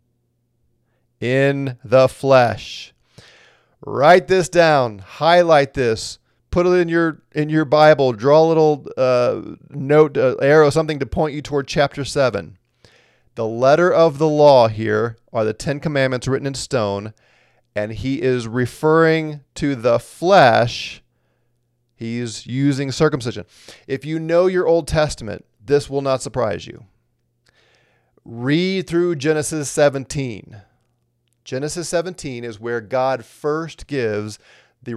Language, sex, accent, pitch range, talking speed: English, male, American, 120-155 Hz, 130 wpm